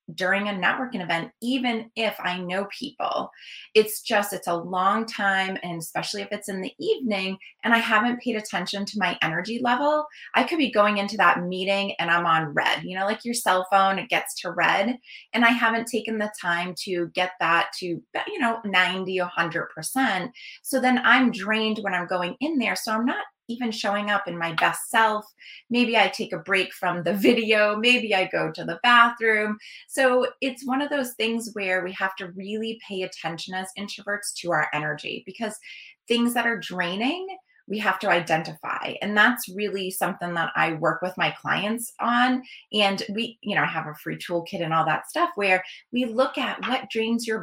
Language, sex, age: English, female, 20-39